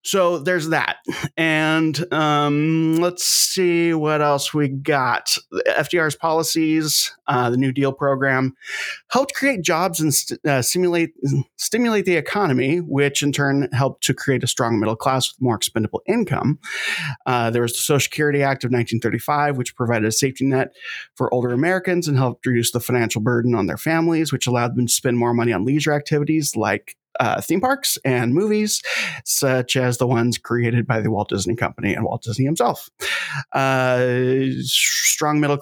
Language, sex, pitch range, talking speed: English, male, 125-160 Hz, 170 wpm